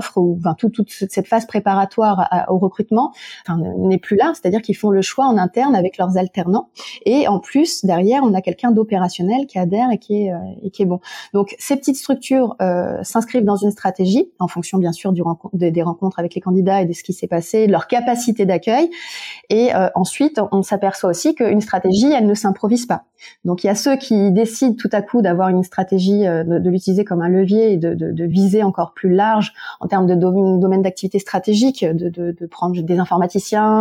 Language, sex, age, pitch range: French, female, 20-39, 185-225 Hz